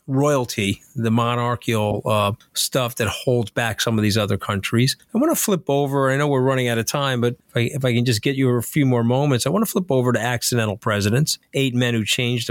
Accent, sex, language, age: American, male, English, 40-59